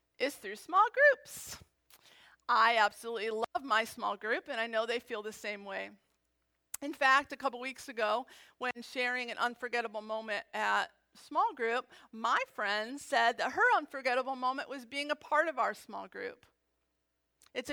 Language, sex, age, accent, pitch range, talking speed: English, female, 40-59, American, 210-270 Hz, 165 wpm